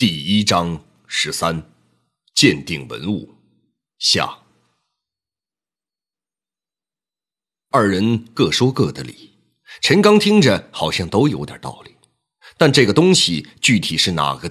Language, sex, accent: Chinese, male, native